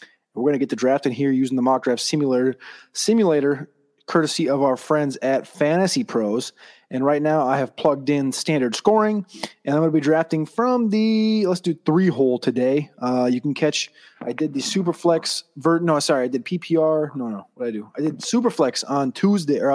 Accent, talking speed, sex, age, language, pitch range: American, 200 wpm, male, 30-49, English, 135-165 Hz